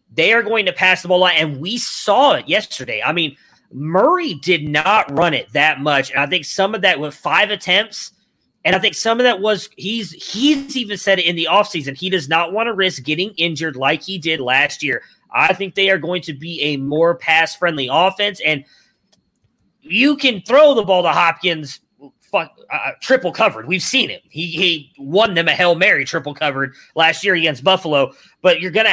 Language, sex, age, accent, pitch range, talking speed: English, male, 30-49, American, 150-190 Hz, 205 wpm